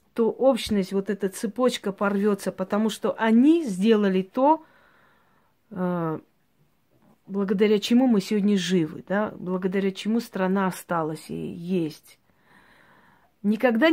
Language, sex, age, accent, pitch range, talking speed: Russian, female, 40-59, native, 195-235 Hz, 105 wpm